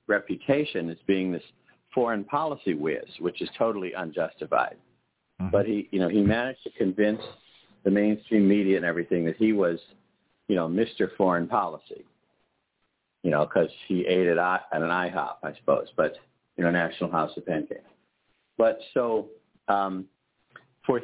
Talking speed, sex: 155 wpm, male